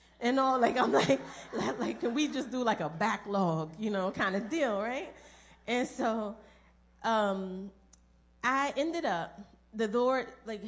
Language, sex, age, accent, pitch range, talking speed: English, female, 30-49, American, 165-220 Hz, 165 wpm